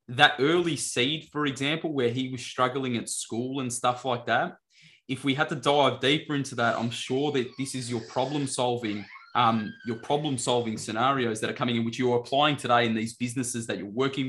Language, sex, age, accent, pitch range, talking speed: English, male, 20-39, Australian, 120-145 Hz, 215 wpm